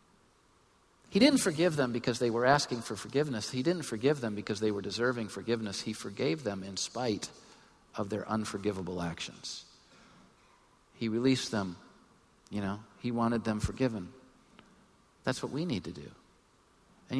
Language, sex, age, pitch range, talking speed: English, male, 50-69, 120-195 Hz, 155 wpm